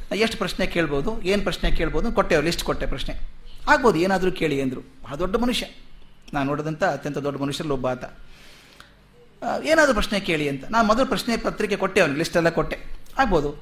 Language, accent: Kannada, native